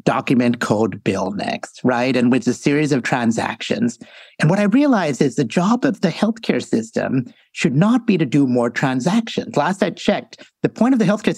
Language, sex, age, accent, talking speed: English, male, 50-69, American, 195 wpm